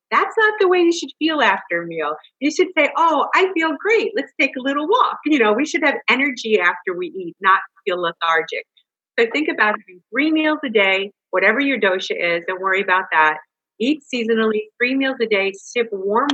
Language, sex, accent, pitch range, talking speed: English, female, American, 180-270 Hz, 215 wpm